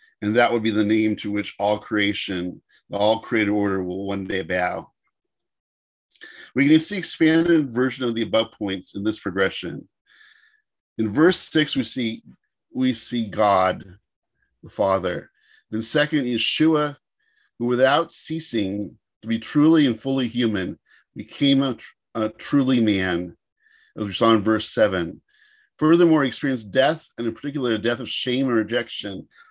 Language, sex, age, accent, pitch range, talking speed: English, male, 50-69, American, 100-135 Hz, 155 wpm